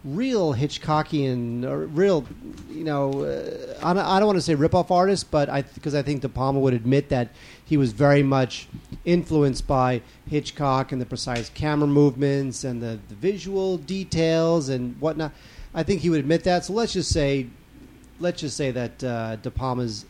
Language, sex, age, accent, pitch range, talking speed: English, male, 40-59, American, 140-175 Hz, 190 wpm